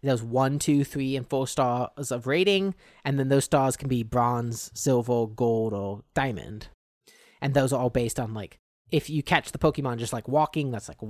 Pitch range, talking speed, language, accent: 120-155 Hz, 200 wpm, English, American